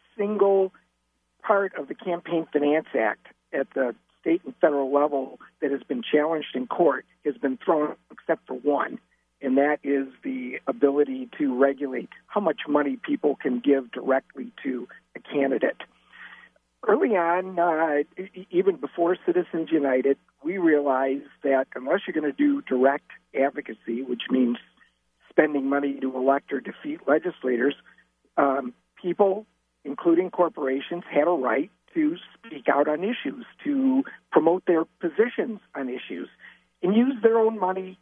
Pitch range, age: 135-195 Hz, 50-69